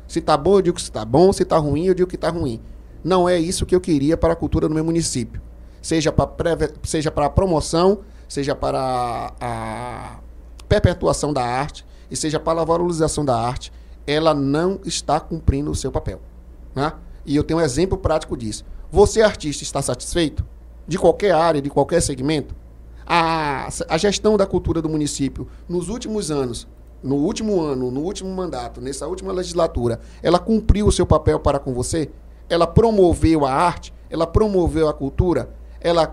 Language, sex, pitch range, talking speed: Portuguese, male, 125-175 Hz, 180 wpm